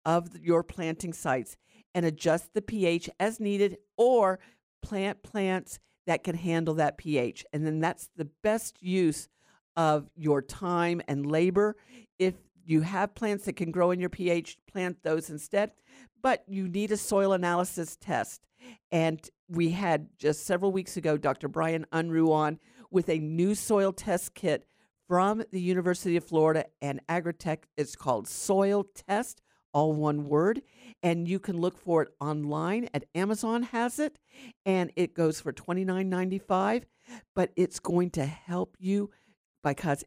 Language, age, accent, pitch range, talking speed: English, 50-69, American, 160-195 Hz, 155 wpm